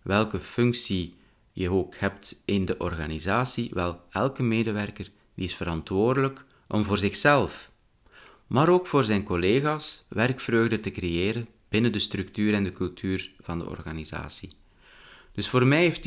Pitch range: 95-125 Hz